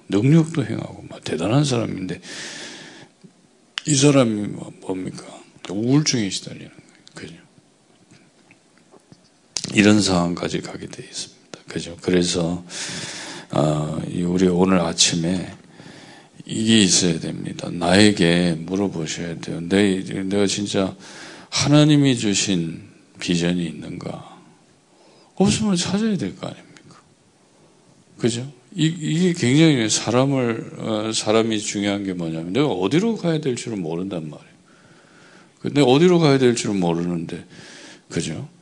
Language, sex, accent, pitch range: Korean, male, native, 90-140 Hz